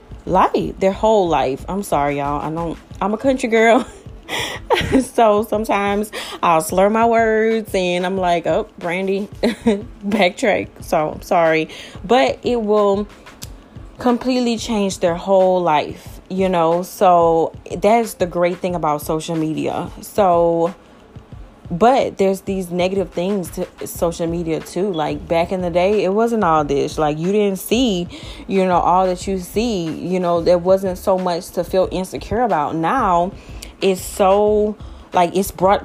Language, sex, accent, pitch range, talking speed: English, female, American, 175-225 Hz, 150 wpm